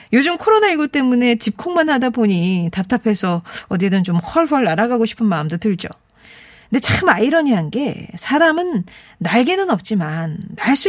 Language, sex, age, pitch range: Korean, female, 40-59, 190-315 Hz